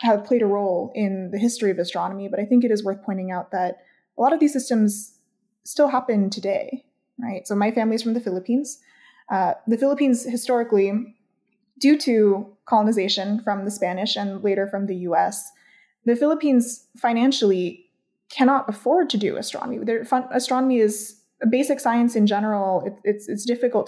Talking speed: 180 wpm